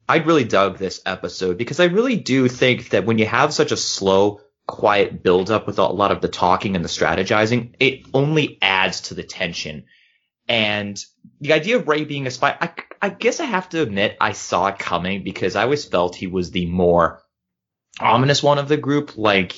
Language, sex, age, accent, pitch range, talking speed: English, male, 30-49, American, 95-130 Hz, 205 wpm